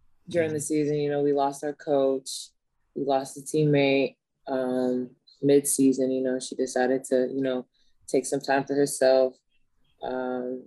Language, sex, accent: English, female, American